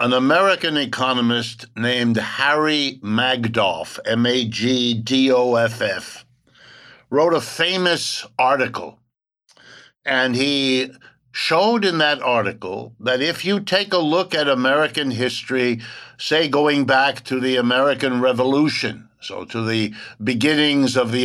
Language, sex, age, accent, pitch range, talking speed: English, male, 60-79, American, 125-155 Hz, 110 wpm